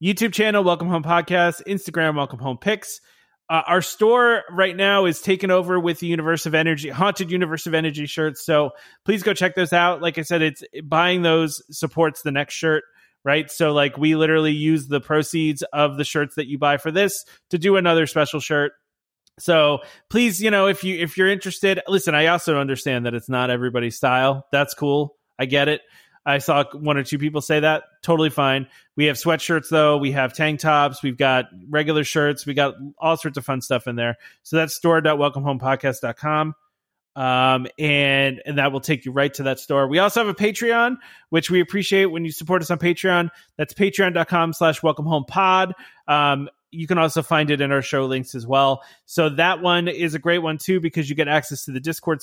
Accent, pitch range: American, 140-170 Hz